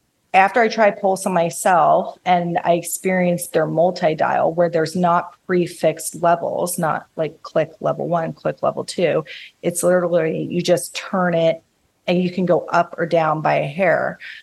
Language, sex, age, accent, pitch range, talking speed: English, female, 30-49, American, 165-190 Hz, 165 wpm